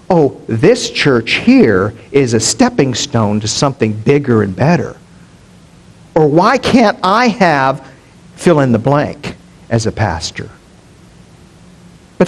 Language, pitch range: English, 115-195 Hz